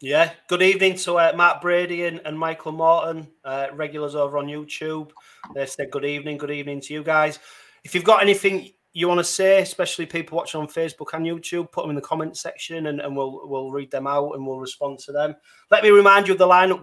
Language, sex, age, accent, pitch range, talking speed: English, male, 30-49, British, 140-170 Hz, 230 wpm